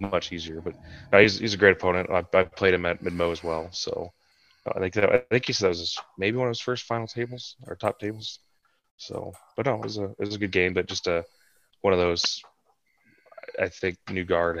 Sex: male